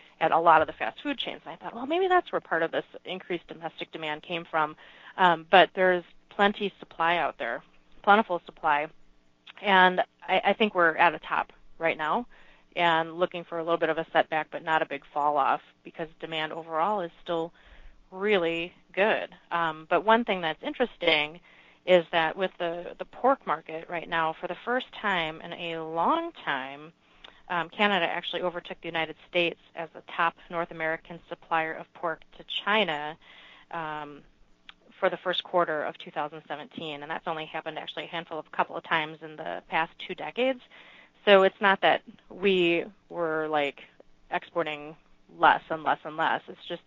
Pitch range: 160-185 Hz